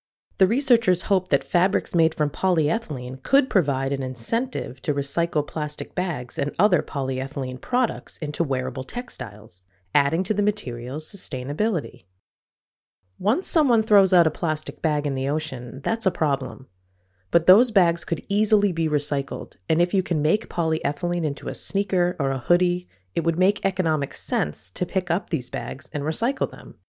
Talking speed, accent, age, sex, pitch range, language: 165 wpm, American, 30-49, female, 135-185 Hz, English